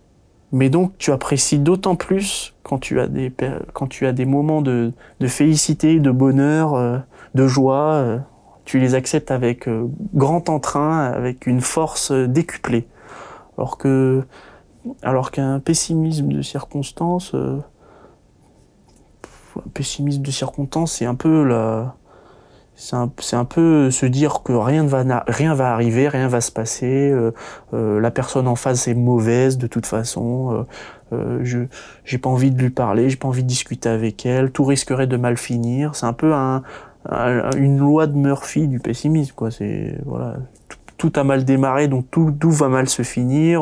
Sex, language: male, French